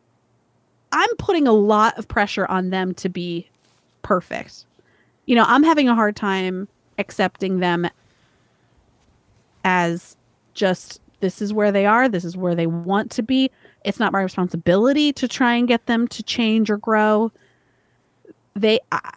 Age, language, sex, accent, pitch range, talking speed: 30-49, English, female, American, 180-230 Hz, 150 wpm